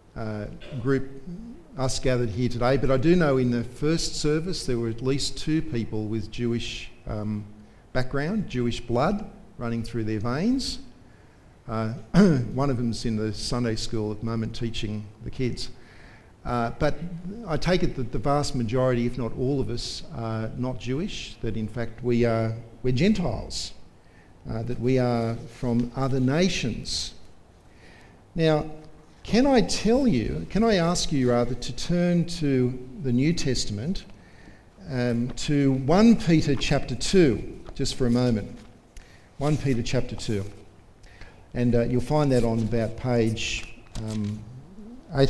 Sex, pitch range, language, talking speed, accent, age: male, 115-155 Hz, English, 150 wpm, Australian, 50-69